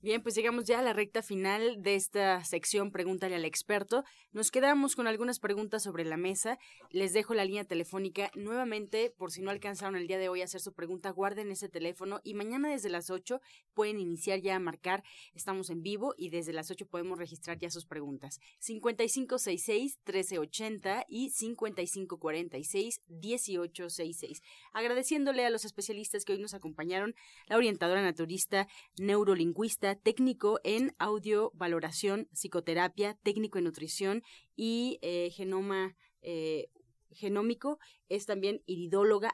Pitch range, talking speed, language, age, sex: 175-220 Hz, 145 wpm, Spanish, 30-49, female